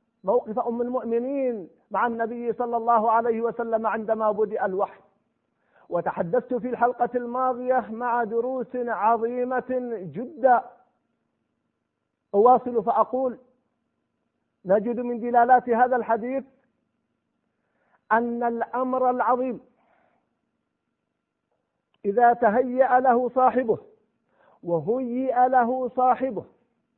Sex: male